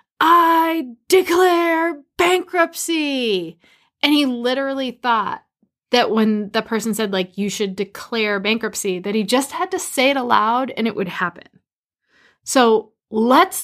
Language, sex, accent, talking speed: English, female, American, 135 wpm